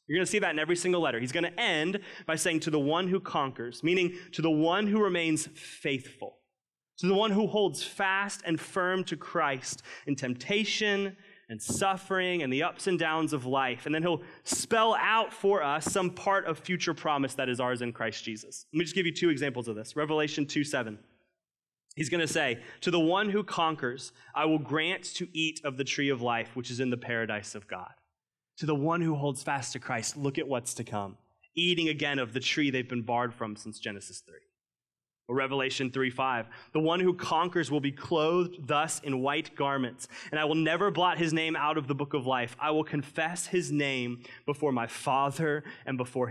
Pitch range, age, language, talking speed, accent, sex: 130-175 Hz, 20-39, English, 215 wpm, American, male